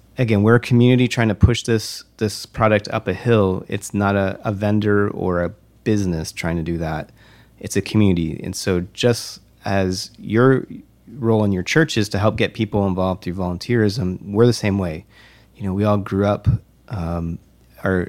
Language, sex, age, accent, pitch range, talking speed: English, male, 30-49, American, 95-115 Hz, 185 wpm